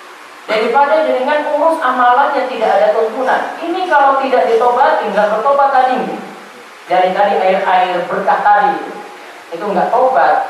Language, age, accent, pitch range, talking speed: Indonesian, 40-59, native, 245-290 Hz, 130 wpm